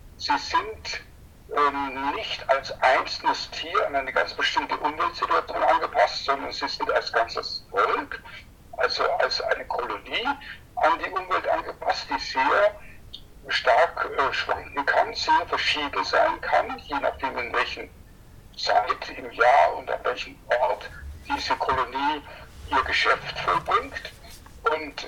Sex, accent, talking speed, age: male, German, 130 wpm, 60-79